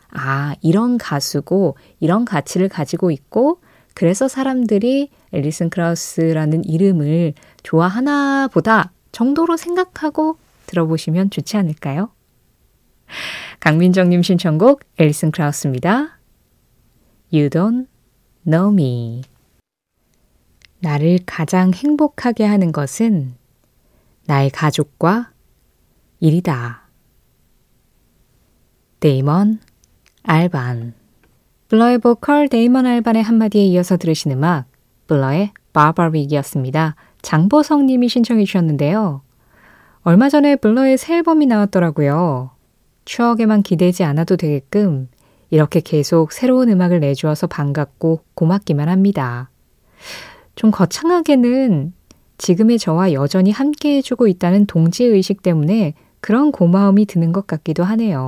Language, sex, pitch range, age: Korean, female, 150-220 Hz, 20-39